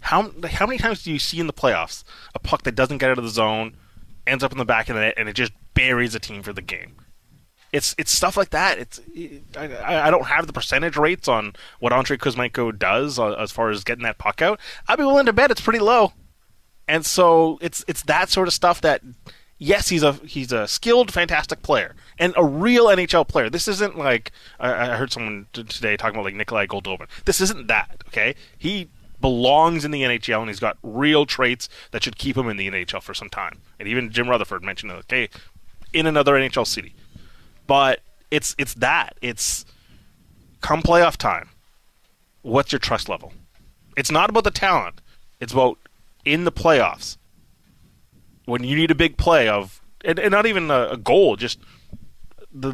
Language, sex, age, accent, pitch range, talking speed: English, male, 20-39, American, 110-160 Hz, 200 wpm